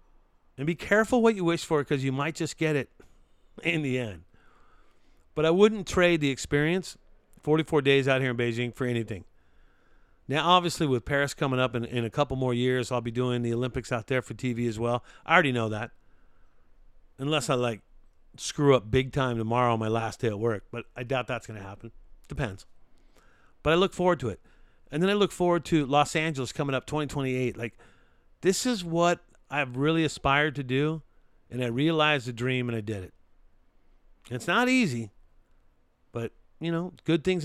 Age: 50-69